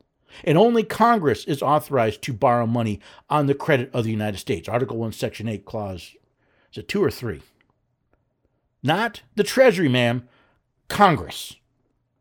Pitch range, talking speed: 130-210 Hz, 145 wpm